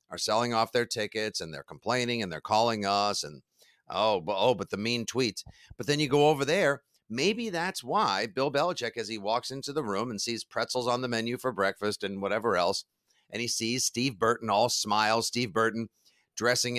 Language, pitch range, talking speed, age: English, 110-145 Hz, 205 wpm, 50-69